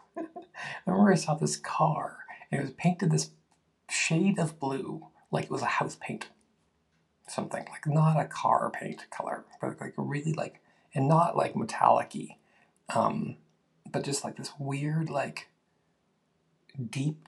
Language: English